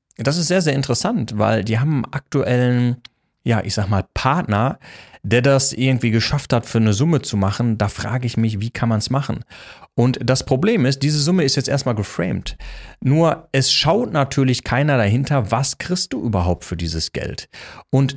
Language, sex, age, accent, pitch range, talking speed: German, male, 30-49, German, 105-135 Hz, 190 wpm